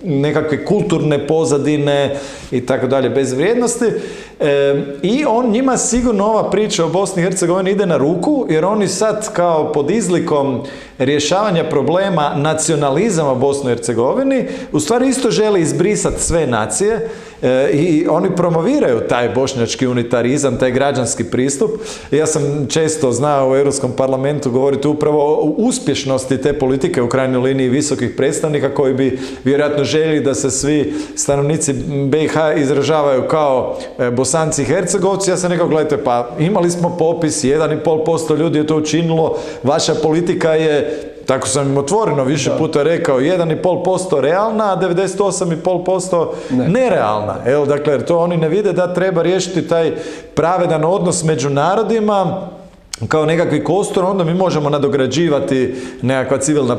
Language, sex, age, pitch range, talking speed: Croatian, male, 40-59, 135-180 Hz, 140 wpm